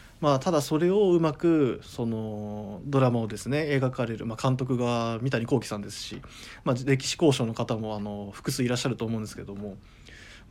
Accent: native